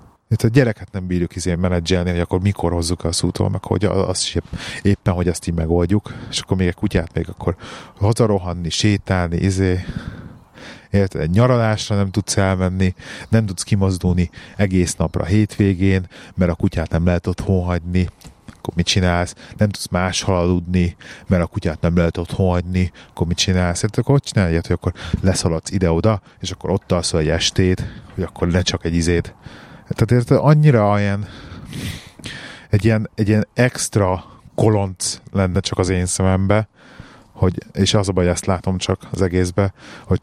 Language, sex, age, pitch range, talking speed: Hungarian, male, 30-49, 90-105 Hz, 170 wpm